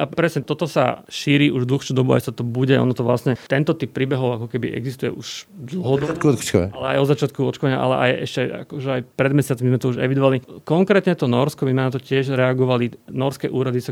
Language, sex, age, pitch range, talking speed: Slovak, male, 30-49, 125-145 Hz, 215 wpm